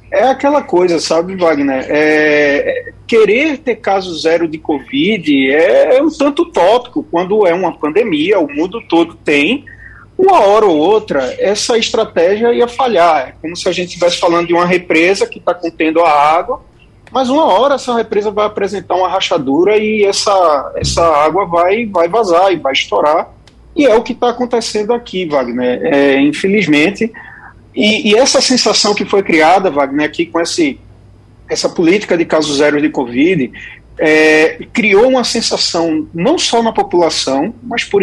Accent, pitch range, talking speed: Brazilian, 165-250 Hz, 165 wpm